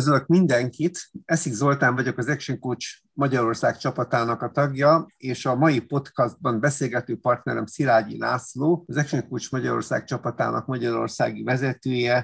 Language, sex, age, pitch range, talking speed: English, male, 50-69, 120-150 Hz, 130 wpm